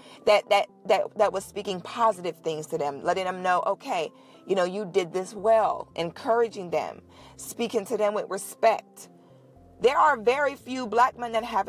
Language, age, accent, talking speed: English, 40-59, American, 180 wpm